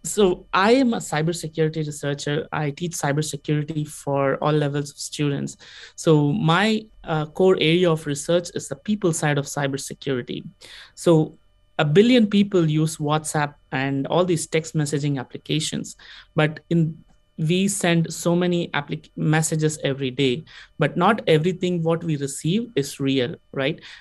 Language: English